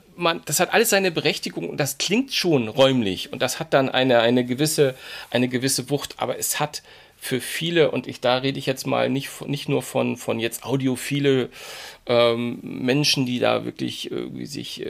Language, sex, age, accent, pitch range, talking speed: German, male, 40-59, German, 125-145 Hz, 180 wpm